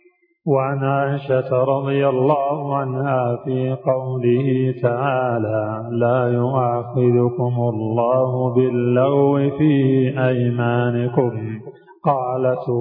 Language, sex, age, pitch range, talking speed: Arabic, male, 40-59, 120-135 Hz, 70 wpm